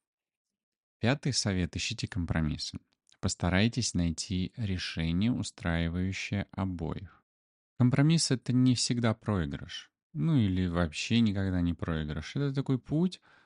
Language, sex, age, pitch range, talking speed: Russian, male, 20-39, 85-110 Hz, 105 wpm